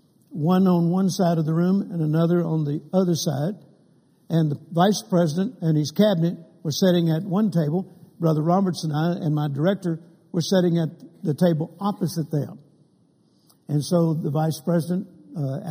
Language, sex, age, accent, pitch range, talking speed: English, male, 60-79, American, 160-195 Hz, 170 wpm